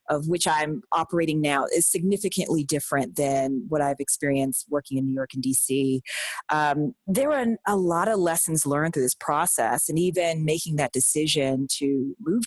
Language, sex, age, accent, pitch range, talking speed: English, female, 30-49, American, 145-180 Hz, 175 wpm